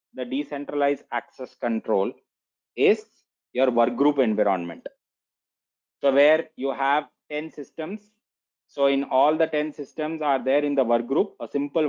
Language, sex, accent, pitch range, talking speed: English, male, Indian, 130-155 Hz, 135 wpm